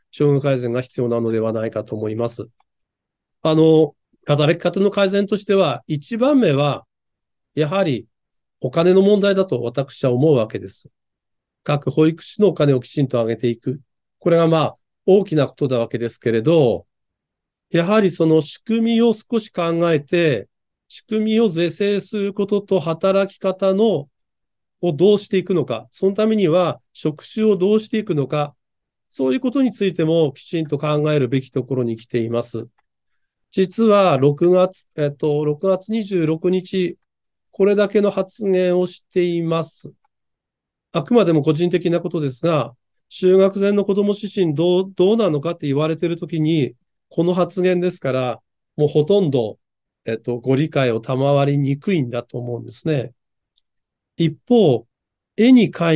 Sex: male